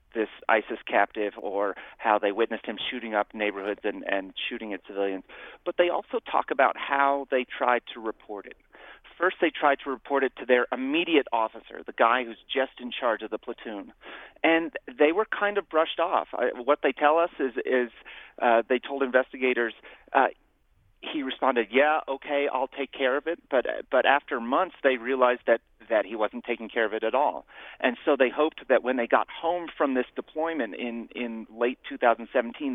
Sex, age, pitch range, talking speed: male, 40-59, 115-140 Hz, 195 wpm